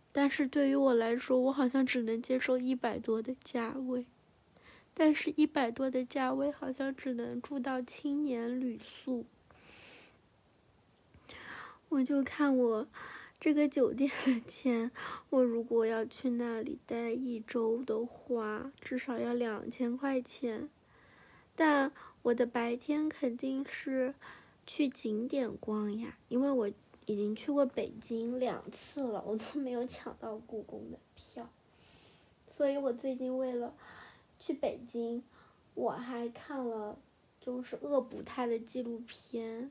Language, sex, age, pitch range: Chinese, female, 20-39, 235-275 Hz